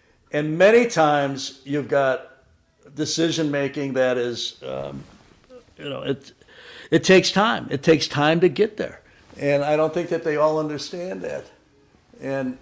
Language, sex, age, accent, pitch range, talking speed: English, male, 60-79, American, 135-175 Hz, 150 wpm